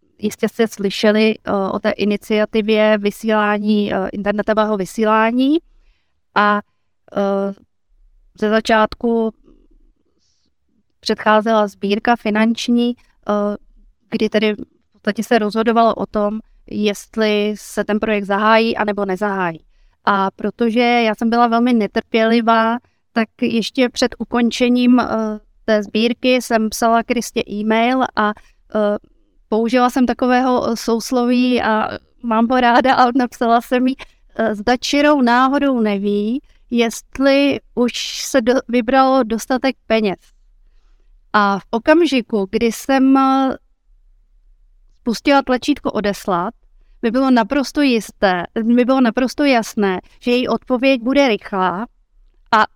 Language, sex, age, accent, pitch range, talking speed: Czech, female, 30-49, native, 210-250 Hz, 110 wpm